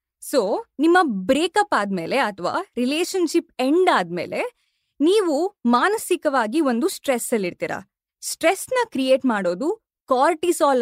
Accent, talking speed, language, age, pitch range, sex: native, 105 wpm, Kannada, 20-39, 225-330 Hz, female